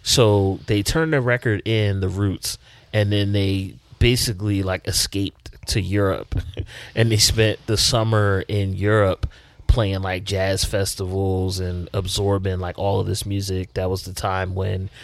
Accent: American